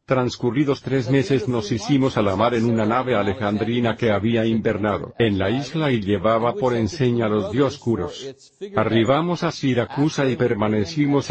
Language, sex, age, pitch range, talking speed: Spanish, male, 50-69, 110-135 Hz, 155 wpm